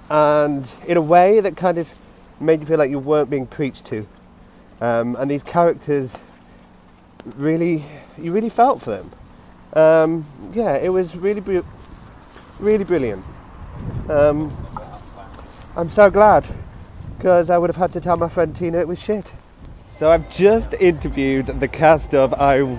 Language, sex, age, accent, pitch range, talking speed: English, male, 30-49, British, 125-180 Hz, 155 wpm